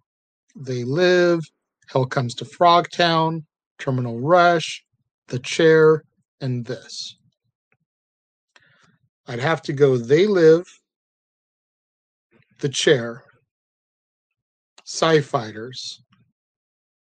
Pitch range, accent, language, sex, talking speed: 125-165 Hz, American, English, male, 75 wpm